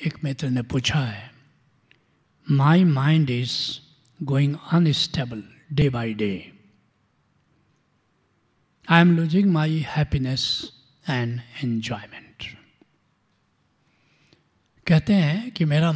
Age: 60-79